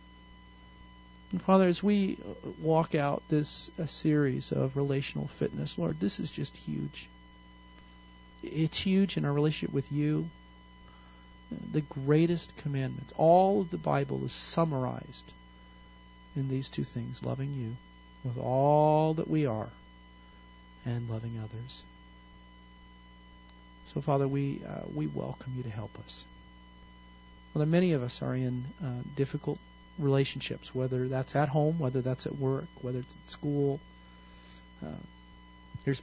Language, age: English, 40-59